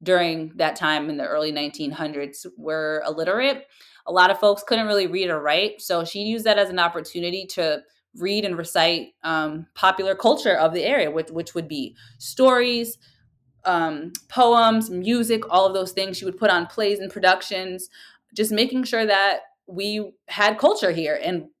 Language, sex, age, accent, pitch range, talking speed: English, female, 20-39, American, 155-195 Hz, 175 wpm